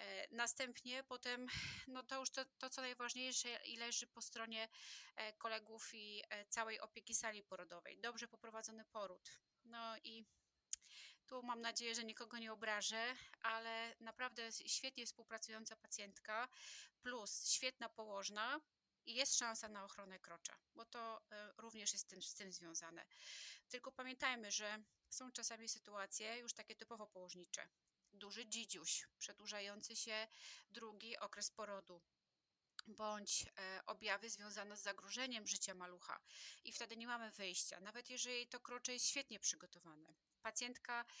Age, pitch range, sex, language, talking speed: 20-39, 205-240 Hz, female, Polish, 130 wpm